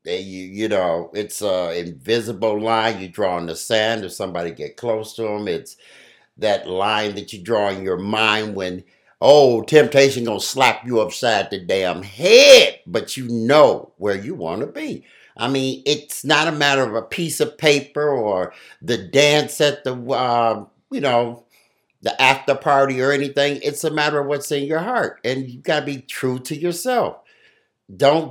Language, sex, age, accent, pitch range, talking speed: English, male, 60-79, American, 120-170 Hz, 180 wpm